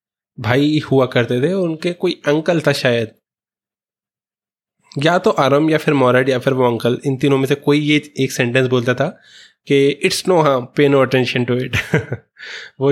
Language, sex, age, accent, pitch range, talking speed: Hindi, male, 20-39, native, 125-150 Hz, 180 wpm